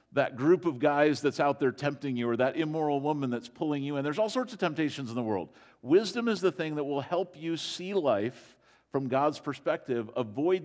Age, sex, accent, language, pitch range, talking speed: 50-69, male, American, English, 120-145 Hz, 220 wpm